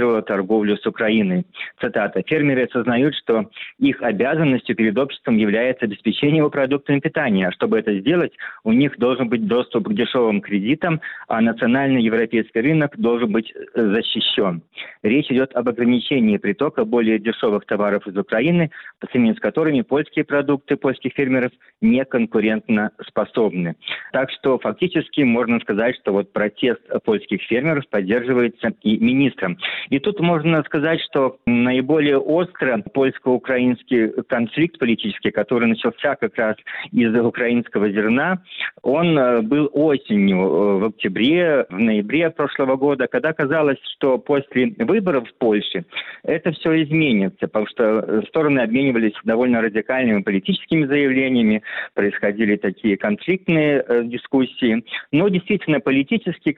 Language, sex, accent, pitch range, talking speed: Russian, male, native, 115-150 Hz, 125 wpm